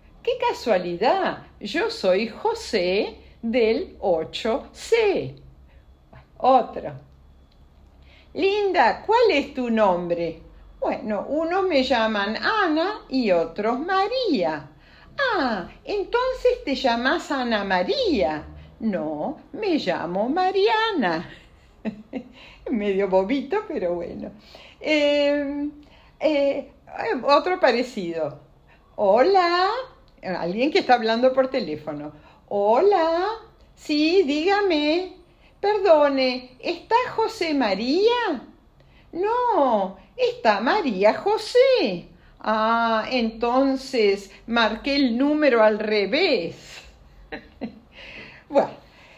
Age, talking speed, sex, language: 50-69, 80 wpm, female, Spanish